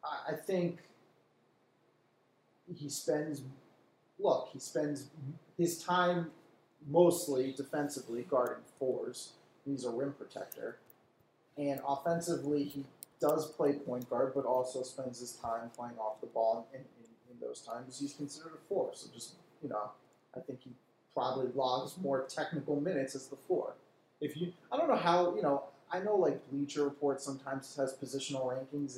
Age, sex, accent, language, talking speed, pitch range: 30-49, male, American, English, 155 wpm, 130-170 Hz